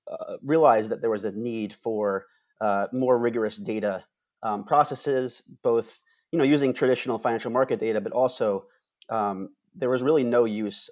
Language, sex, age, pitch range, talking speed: English, male, 30-49, 105-130 Hz, 165 wpm